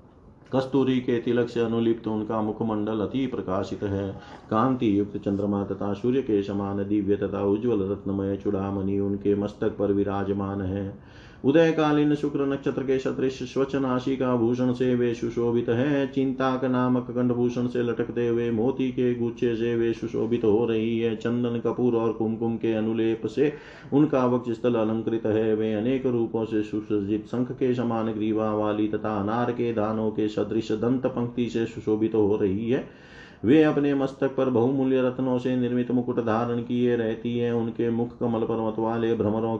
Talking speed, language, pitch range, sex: 165 wpm, Hindi, 105-125 Hz, male